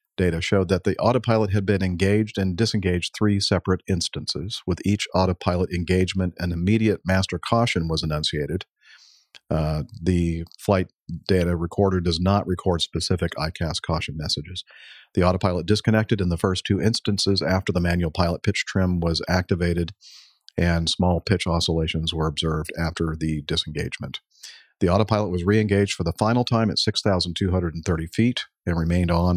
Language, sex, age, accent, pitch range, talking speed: English, male, 50-69, American, 85-100 Hz, 150 wpm